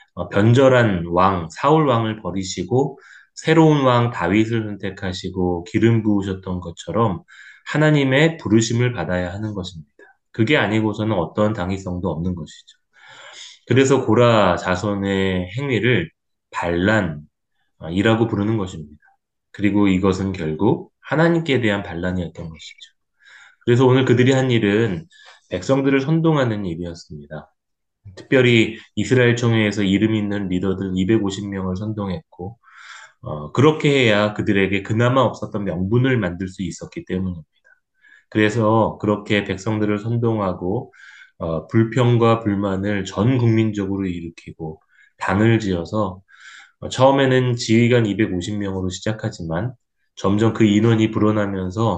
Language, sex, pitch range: Korean, male, 95-115 Hz